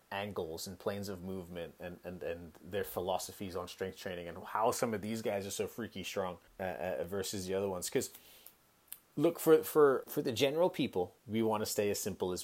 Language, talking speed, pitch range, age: English, 210 wpm, 95-125 Hz, 30-49